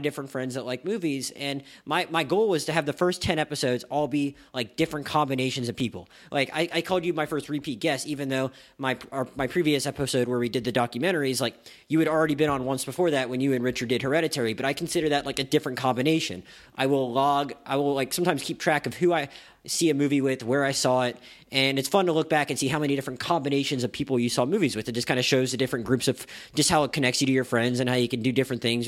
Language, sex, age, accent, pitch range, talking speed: English, male, 30-49, American, 125-150 Hz, 265 wpm